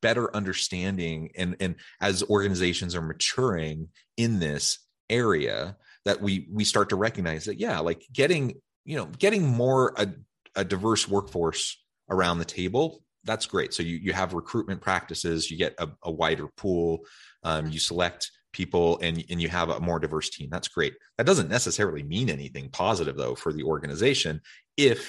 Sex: male